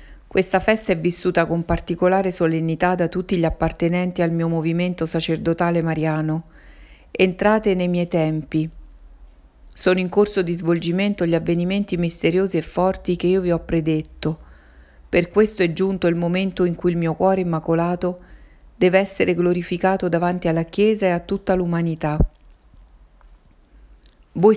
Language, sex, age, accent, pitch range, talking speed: Italian, female, 40-59, native, 165-185 Hz, 140 wpm